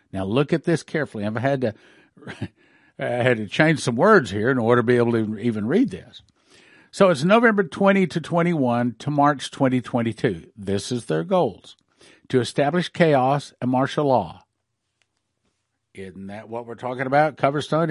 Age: 50-69